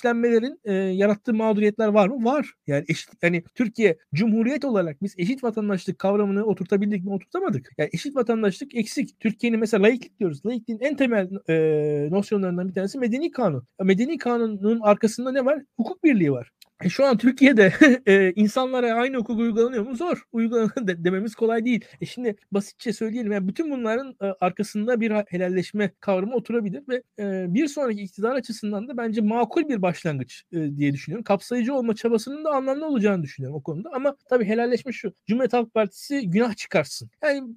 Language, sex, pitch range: Turkish, male, 185-240 Hz